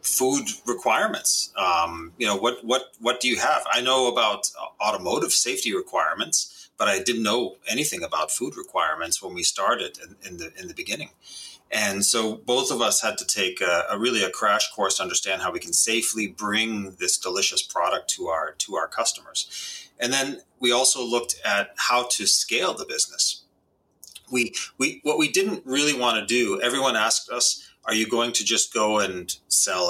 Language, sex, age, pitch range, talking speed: English, male, 30-49, 100-120 Hz, 190 wpm